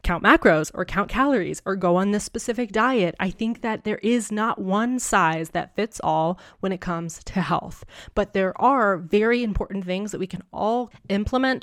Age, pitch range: 20-39, 175-215 Hz